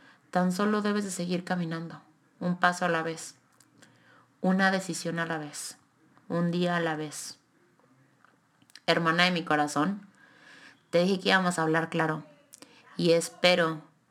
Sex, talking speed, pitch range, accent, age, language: female, 145 wpm, 160-185 Hz, Mexican, 20-39, Spanish